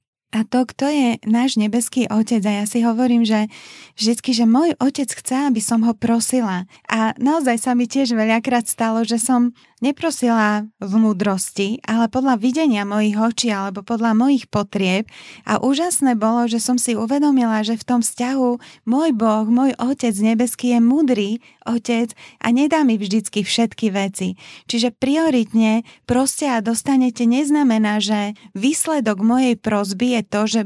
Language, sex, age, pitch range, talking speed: Slovak, female, 20-39, 220-255 Hz, 155 wpm